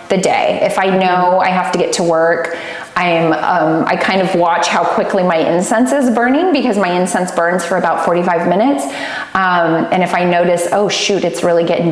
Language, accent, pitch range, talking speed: English, American, 155-180 Hz, 210 wpm